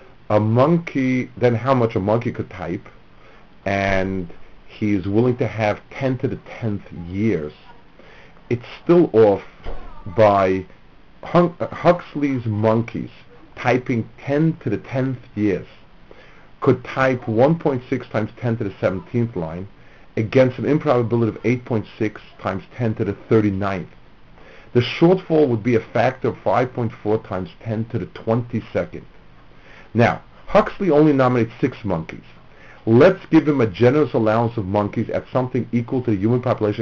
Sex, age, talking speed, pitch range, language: male, 50-69, 135 wpm, 100-130 Hz, English